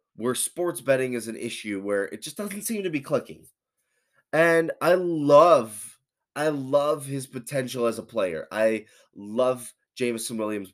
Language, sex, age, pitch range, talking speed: English, male, 20-39, 110-155 Hz, 155 wpm